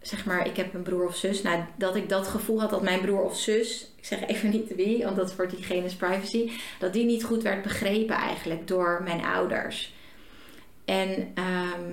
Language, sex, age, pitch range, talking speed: Dutch, female, 30-49, 180-210 Hz, 195 wpm